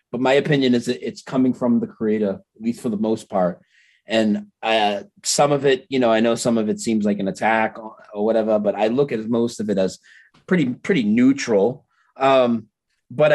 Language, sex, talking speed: English, male, 205 wpm